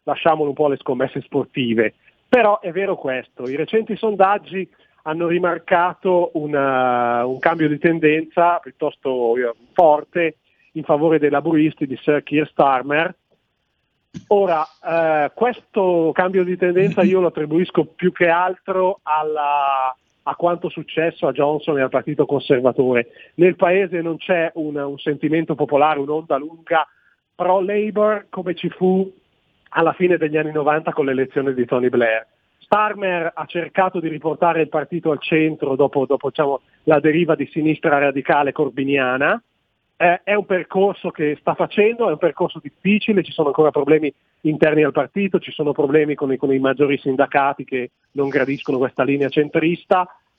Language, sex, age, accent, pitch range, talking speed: Italian, male, 40-59, native, 145-180 Hz, 150 wpm